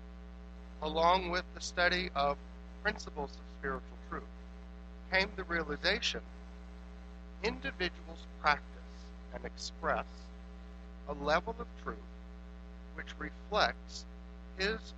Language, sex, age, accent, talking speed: English, male, 50-69, American, 95 wpm